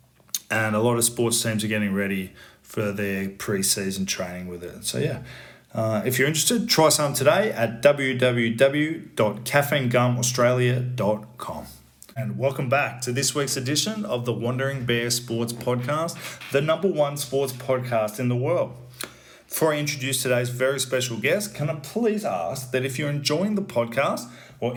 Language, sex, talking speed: English, male, 155 wpm